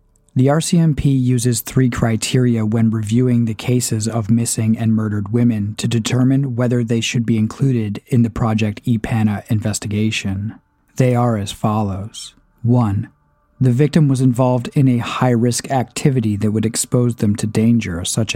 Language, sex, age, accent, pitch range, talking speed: English, male, 40-59, American, 110-125 Hz, 155 wpm